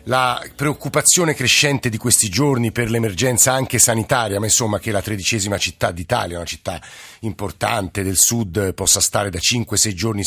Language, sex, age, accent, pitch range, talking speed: Italian, male, 50-69, native, 110-135 Hz, 160 wpm